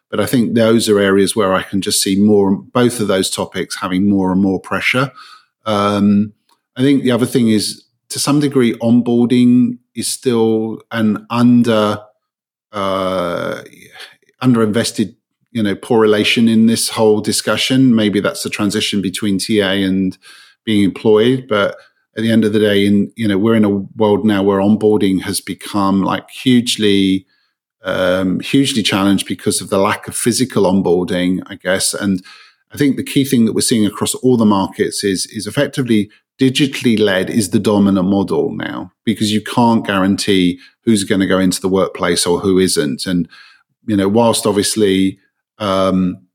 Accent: British